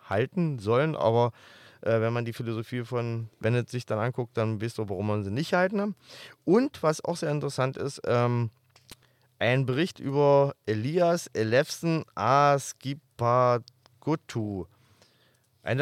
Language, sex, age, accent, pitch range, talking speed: German, male, 20-39, German, 115-145 Hz, 135 wpm